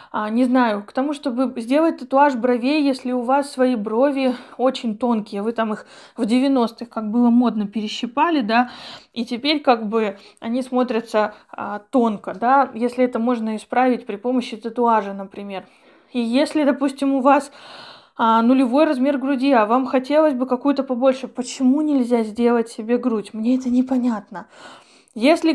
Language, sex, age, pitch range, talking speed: Russian, female, 20-39, 235-285 Hz, 150 wpm